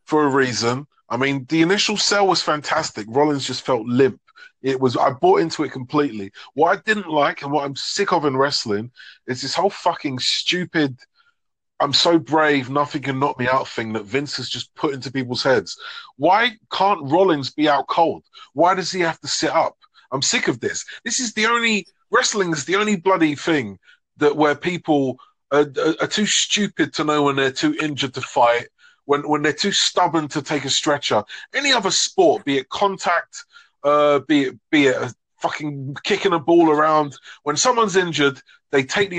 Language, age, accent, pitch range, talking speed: English, 30-49, British, 140-195 Hz, 200 wpm